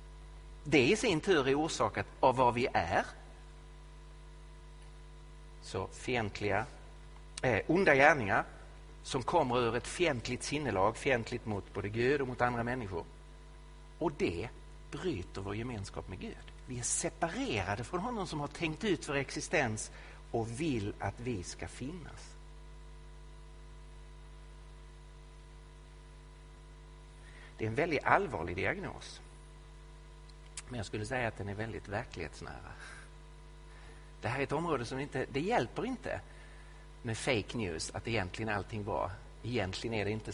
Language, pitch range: Swedish, 105-145 Hz